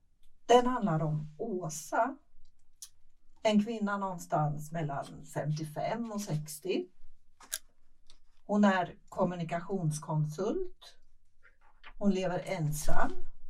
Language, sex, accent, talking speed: Swedish, female, native, 75 wpm